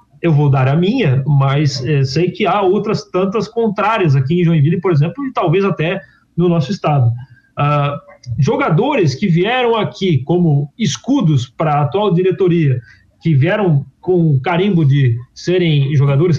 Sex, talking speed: male, 155 wpm